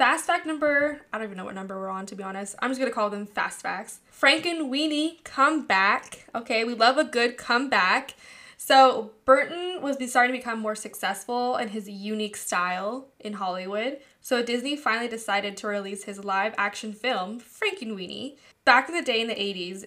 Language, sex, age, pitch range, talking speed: English, female, 10-29, 200-250 Hz, 190 wpm